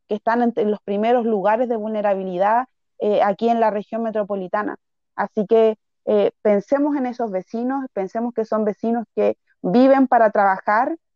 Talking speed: 155 wpm